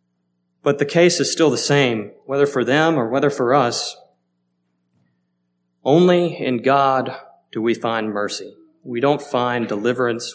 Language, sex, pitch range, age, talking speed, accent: English, male, 105-140 Hz, 30-49, 145 wpm, American